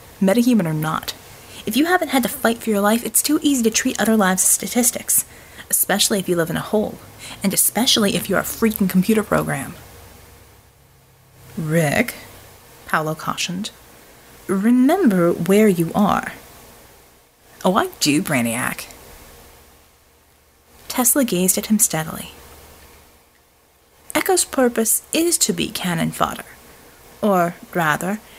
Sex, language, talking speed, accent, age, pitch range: female, English, 130 wpm, American, 30-49, 165-245 Hz